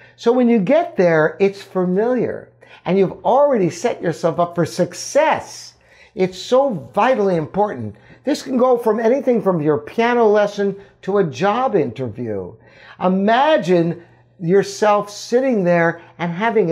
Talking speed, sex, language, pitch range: 135 wpm, male, English, 170-235 Hz